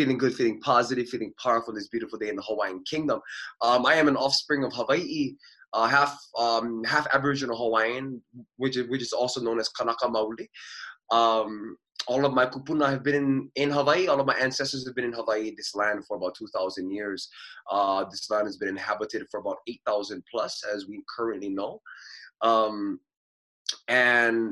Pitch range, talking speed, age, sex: 110-140 Hz, 185 wpm, 20-39, male